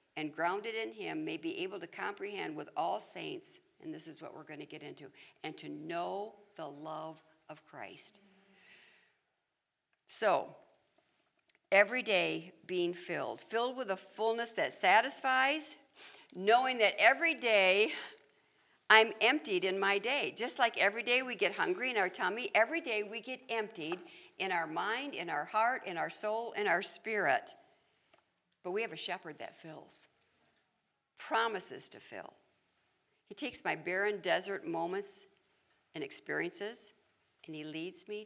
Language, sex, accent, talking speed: English, female, American, 150 wpm